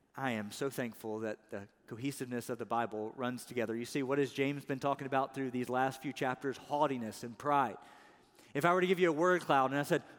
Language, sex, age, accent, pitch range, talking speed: English, male, 40-59, American, 135-185 Hz, 235 wpm